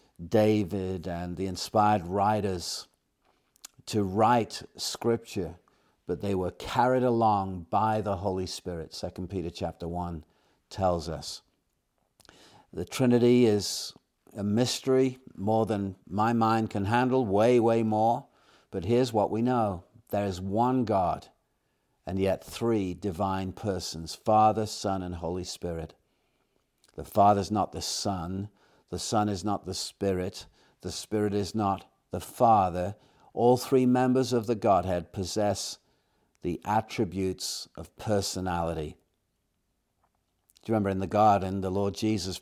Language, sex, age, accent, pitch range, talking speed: English, male, 50-69, British, 95-110 Hz, 130 wpm